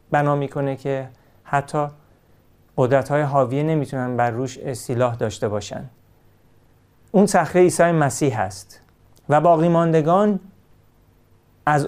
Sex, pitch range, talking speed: male, 120-170 Hz, 105 wpm